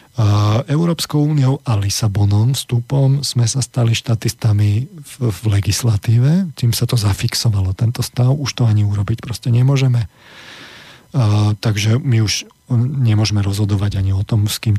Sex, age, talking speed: male, 40-59, 145 wpm